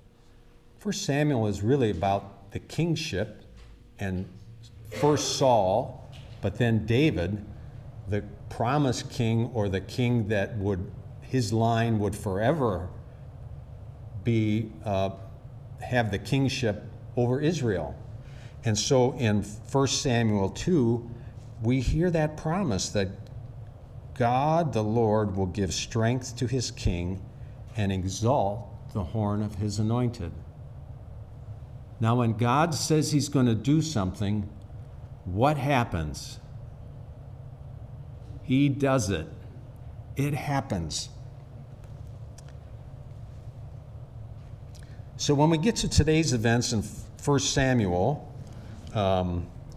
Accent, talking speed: American, 100 wpm